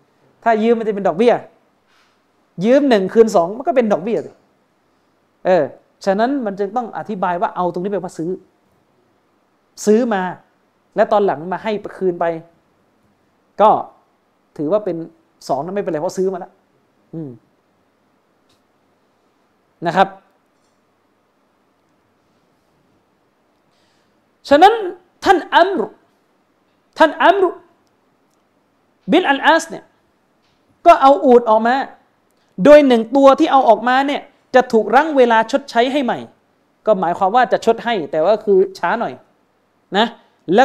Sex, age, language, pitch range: male, 40-59, Thai, 190-270 Hz